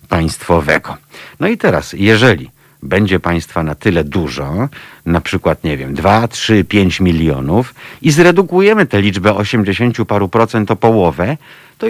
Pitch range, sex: 85-120 Hz, male